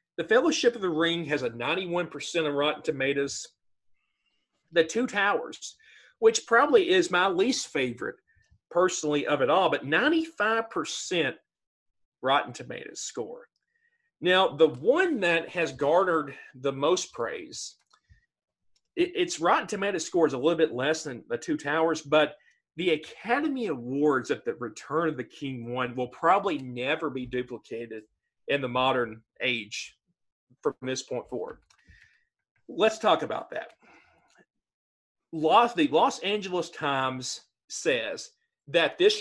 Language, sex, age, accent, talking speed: English, male, 40-59, American, 130 wpm